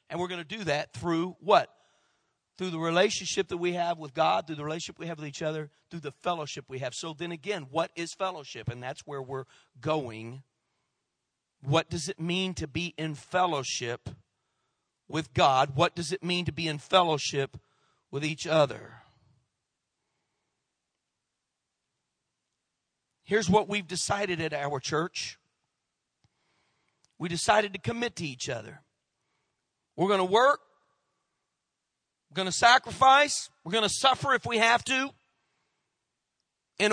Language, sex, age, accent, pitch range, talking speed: English, male, 40-59, American, 155-225 Hz, 150 wpm